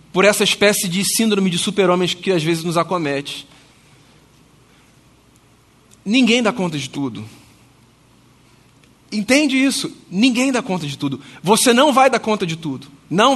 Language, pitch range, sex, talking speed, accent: Portuguese, 200-265 Hz, male, 145 wpm, Brazilian